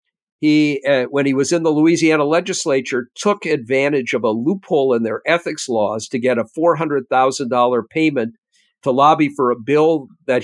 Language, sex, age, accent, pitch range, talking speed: English, male, 50-69, American, 130-170 Hz, 165 wpm